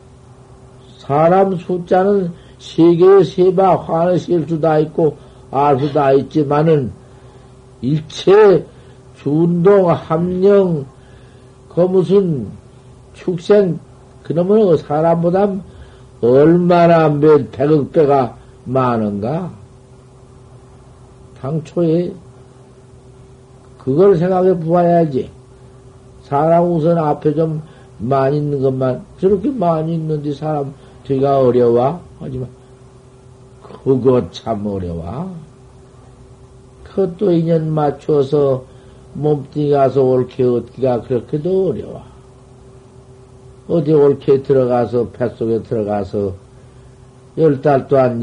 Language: Korean